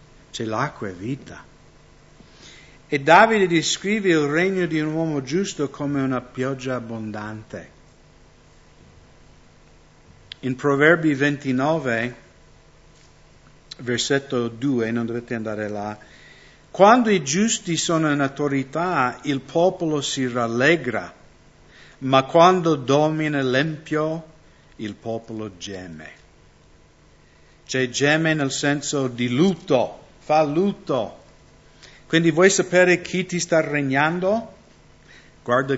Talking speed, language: 100 wpm, English